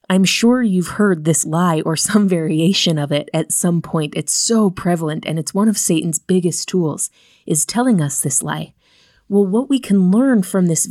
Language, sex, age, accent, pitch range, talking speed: English, female, 30-49, American, 175-220 Hz, 200 wpm